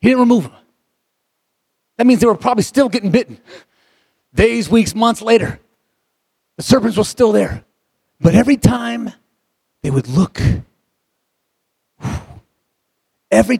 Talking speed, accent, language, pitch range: 125 wpm, American, English, 160-225 Hz